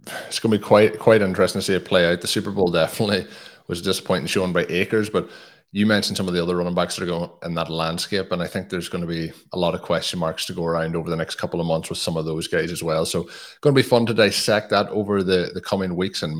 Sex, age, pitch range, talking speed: male, 30-49, 85-100 Hz, 285 wpm